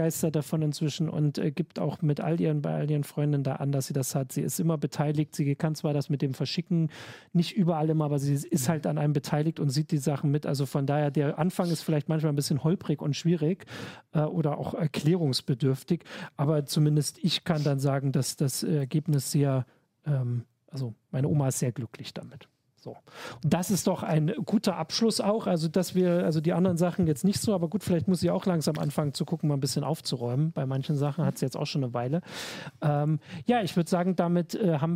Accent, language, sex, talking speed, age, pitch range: German, German, male, 225 wpm, 40-59, 150-180 Hz